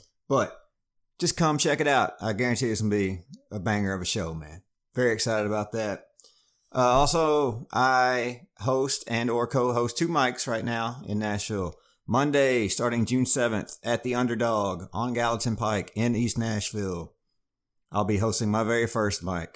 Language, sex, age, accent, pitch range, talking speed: English, male, 30-49, American, 95-125 Hz, 170 wpm